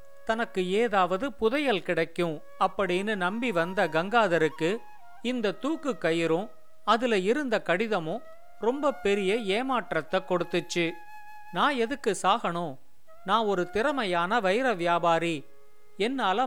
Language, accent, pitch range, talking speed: Tamil, native, 175-235 Hz, 100 wpm